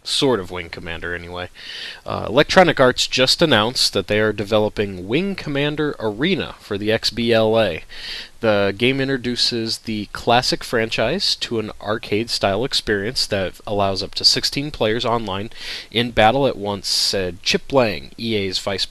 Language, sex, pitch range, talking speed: English, male, 100-130 Hz, 150 wpm